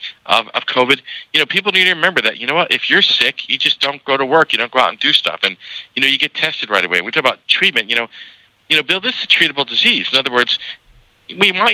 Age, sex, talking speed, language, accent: 50-69, male, 280 wpm, English, American